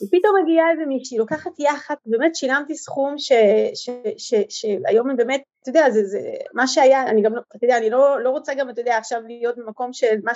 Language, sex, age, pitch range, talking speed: Hebrew, female, 30-49, 225-320 Hz, 205 wpm